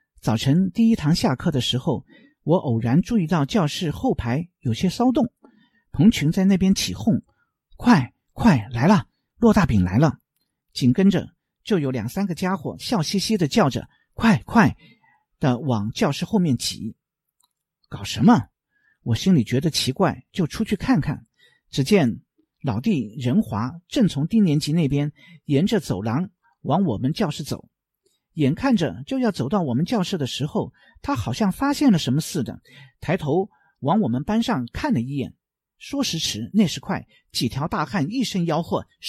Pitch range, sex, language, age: 140-225 Hz, male, Chinese, 50-69